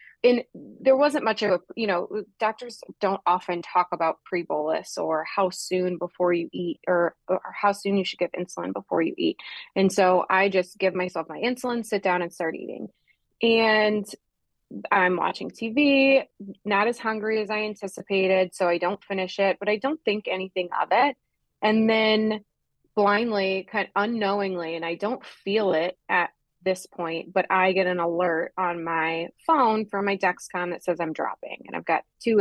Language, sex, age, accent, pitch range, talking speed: English, female, 20-39, American, 175-215 Hz, 185 wpm